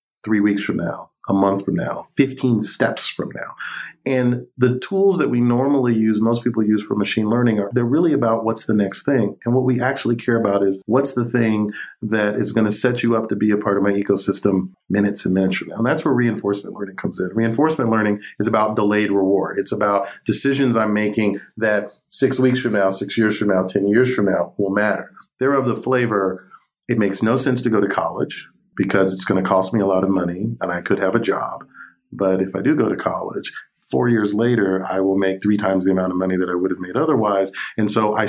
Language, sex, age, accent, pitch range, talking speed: English, male, 40-59, American, 100-120 Hz, 235 wpm